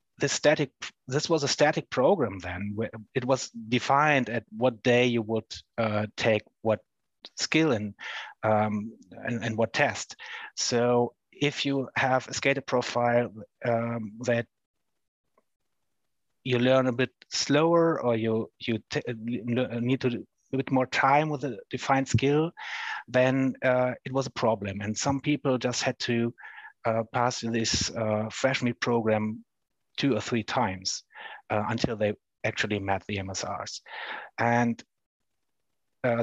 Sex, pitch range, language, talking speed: male, 110-130 Hz, English, 145 wpm